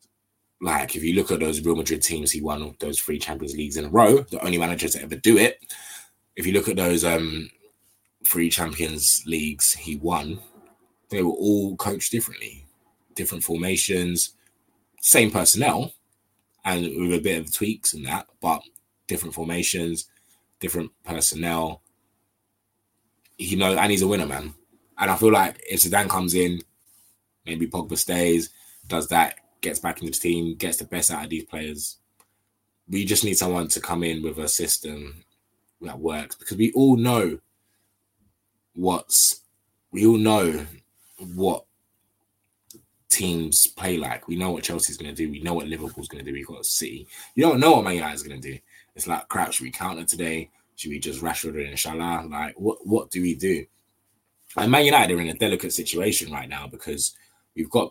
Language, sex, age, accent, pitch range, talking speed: English, male, 20-39, British, 80-105 Hz, 175 wpm